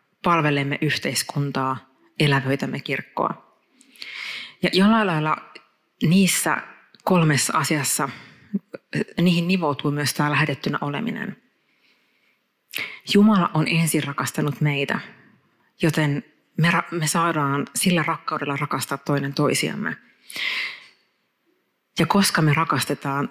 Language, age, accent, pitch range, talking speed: Finnish, 30-49, native, 140-170 Hz, 90 wpm